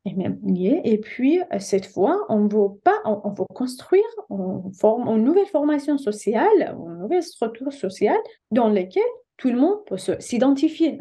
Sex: female